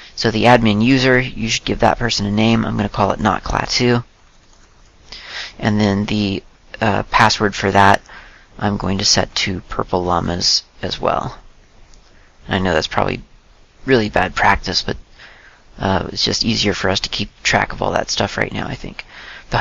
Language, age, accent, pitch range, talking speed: English, 40-59, American, 100-115 Hz, 185 wpm